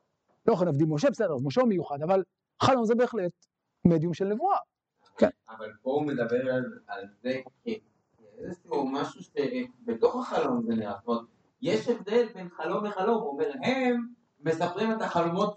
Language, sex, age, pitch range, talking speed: Hebrew, male, 50-69, 170-240 Hz, 145 wpm